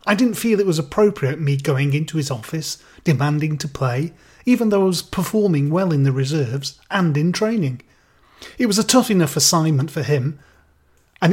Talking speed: 185 wpm